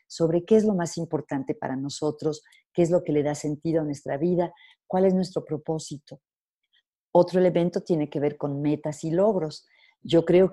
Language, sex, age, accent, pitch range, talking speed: Spanish, female, 50-69, Mexican, 150-190 Hz, 190 wpm